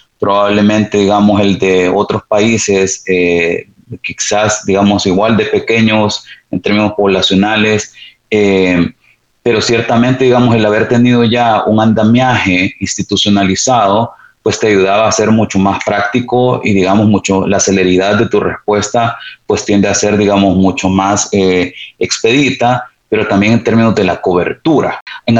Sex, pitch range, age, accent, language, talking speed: male, 100-120 Hz, 30-49, Venezuelan, Spanish, 140 wpm